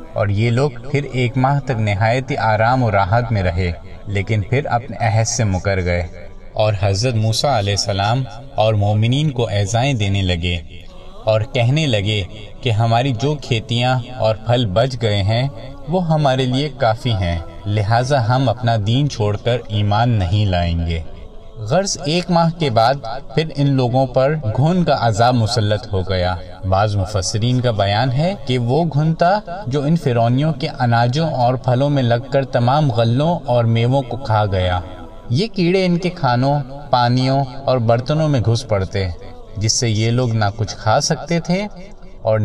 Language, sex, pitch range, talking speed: Urdu, male, 105-135 Hz, 170 wpm